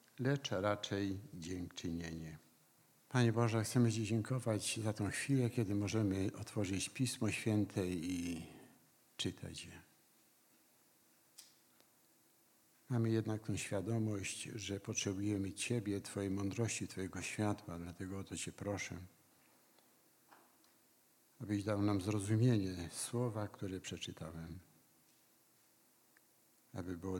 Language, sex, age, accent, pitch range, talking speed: Polish, male, 60-79, native, 90-115 Hz, 95 wpm